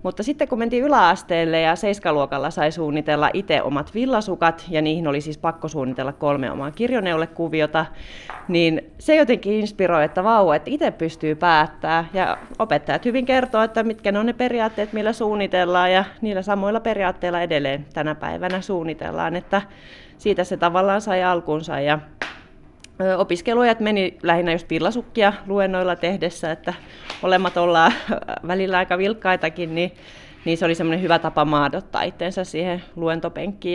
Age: 30-49